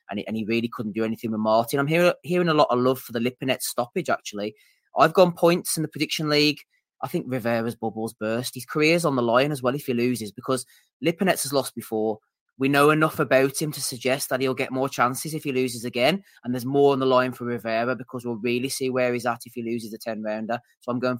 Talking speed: 240 wpm